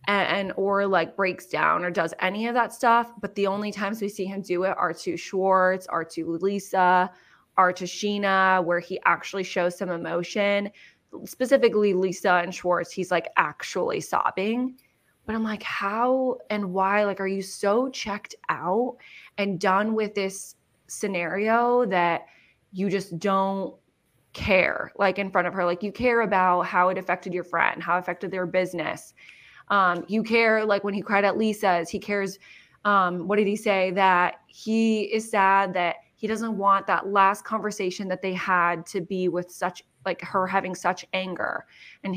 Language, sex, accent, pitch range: English, female, American, 180-205 Hz